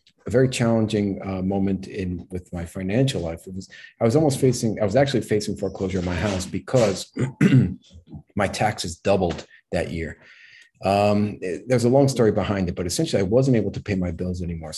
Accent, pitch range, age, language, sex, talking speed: American, 90-115 Hz, 40-59, English, male, 195 wpm